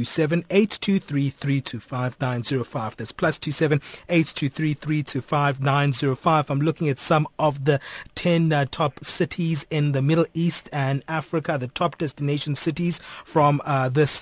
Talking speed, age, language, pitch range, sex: 195 wpm, 30-49, English, 135-160 Hz, male